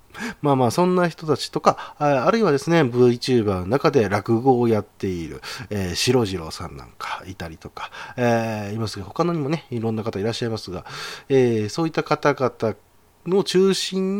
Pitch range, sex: 100-150 Hz, male